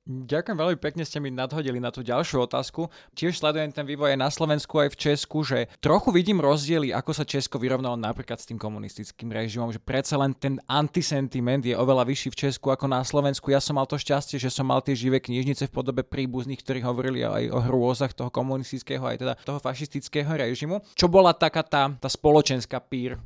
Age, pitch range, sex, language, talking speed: 20-39, 120-150 Hz, male, Slovak, 205 wpm